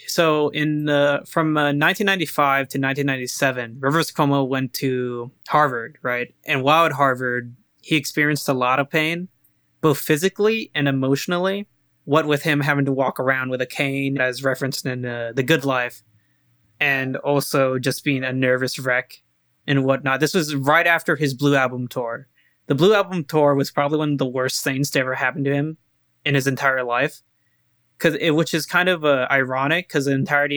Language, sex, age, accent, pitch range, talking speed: English, male, 20-39, American, 130-150 Hz, 185 wpm